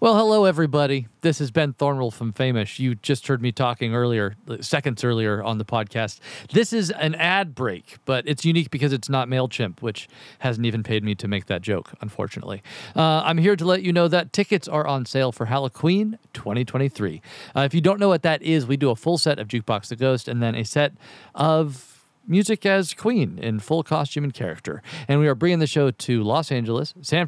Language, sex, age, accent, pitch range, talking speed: English, male, 40-59, American, 120-165 Hz, 215 wpm